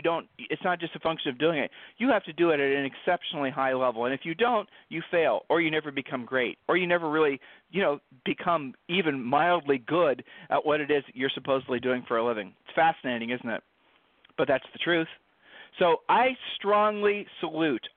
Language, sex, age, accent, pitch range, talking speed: English, male, 40-59, American, 130-185 Hz, 215 wpm